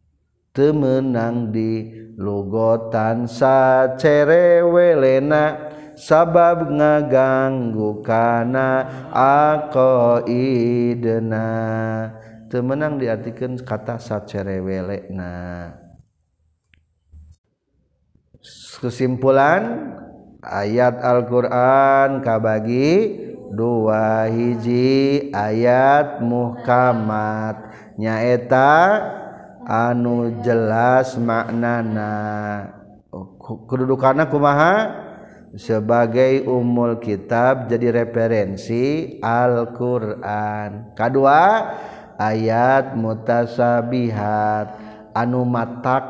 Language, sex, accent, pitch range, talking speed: Indonesian, male, native, 110-130 Hz, 50 wpm